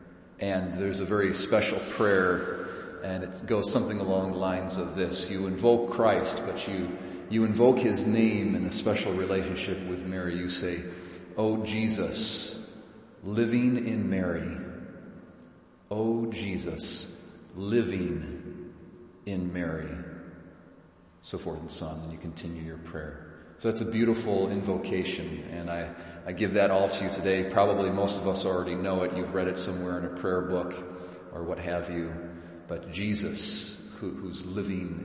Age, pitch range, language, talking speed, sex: 40-59, 90-105 Hz, English, 155 wpm, male